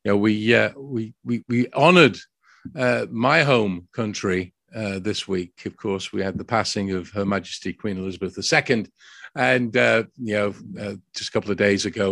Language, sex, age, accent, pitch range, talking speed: English, male, 50-69, British, 105-135 Hz, 190 wpm